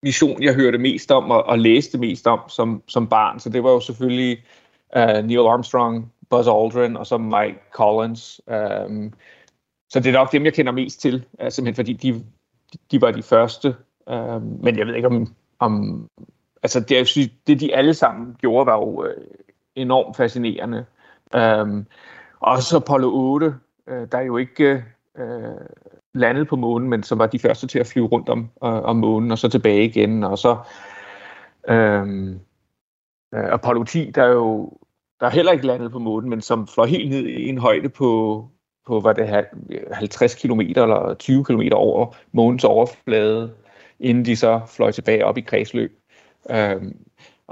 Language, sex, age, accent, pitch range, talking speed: Danish, male, 30-49, native, 110-130 Hz, 175 wpm